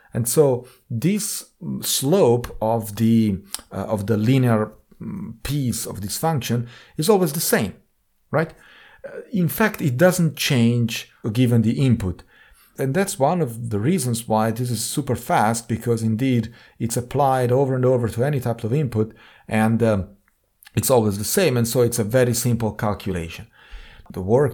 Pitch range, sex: 115-155 Hz, male